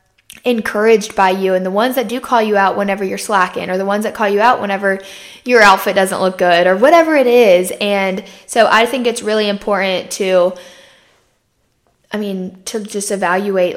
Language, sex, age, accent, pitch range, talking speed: English, female, 10-29, American, 195-245 Hz, 190 wpm